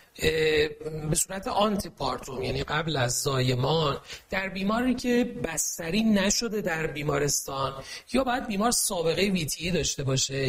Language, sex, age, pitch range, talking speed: Persian, male, 40-59, 145-195 Hz, 120 wpm